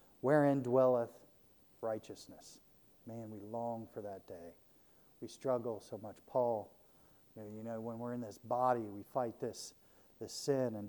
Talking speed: 150 wpm